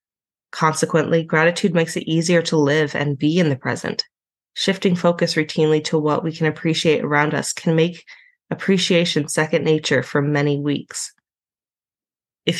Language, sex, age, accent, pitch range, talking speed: English, female, 20-39, American, 150-175 Hz, 150 wpm